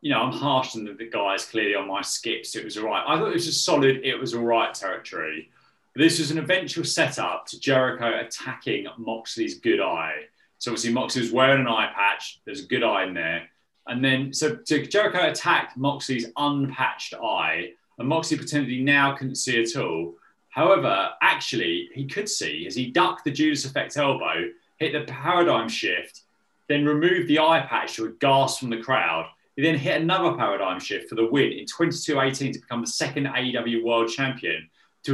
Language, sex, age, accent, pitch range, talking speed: English, male, 30-49, British, 120-165 Hz, 200 wpm